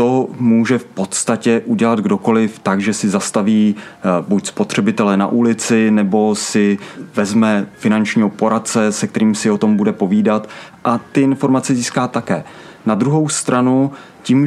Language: Czech